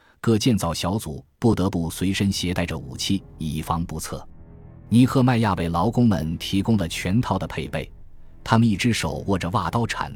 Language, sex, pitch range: Chinese, male, 85-115 Hz